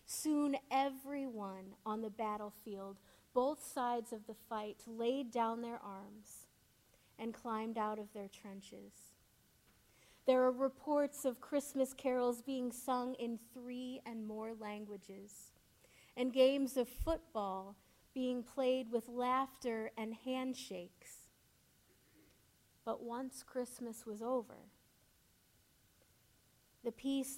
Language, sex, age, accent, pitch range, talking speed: English, female, 30-49, American, 215-260 Hz, 105 wpm